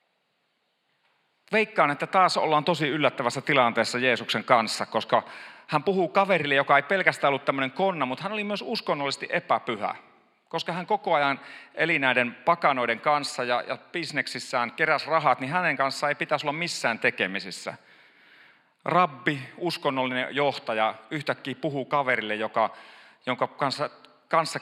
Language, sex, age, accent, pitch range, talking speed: Finnish, male, 40-59, native, 130-180 Hz, 130 wpm